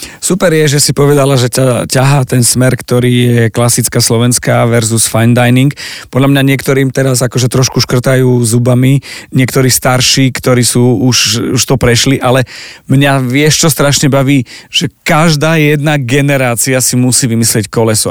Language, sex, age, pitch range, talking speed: Slovak, male, 40-59, 120-140 Hz, 155 wpm